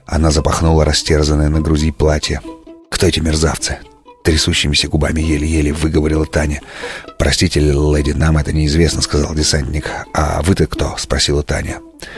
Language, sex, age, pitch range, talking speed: Russian, male, 30-49, 75-85 Hz, 130 wpm